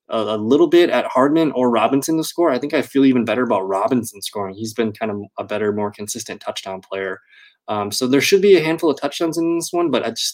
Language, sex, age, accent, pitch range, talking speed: English, male, 20-39, American, 110-135 Hz, 250 wpm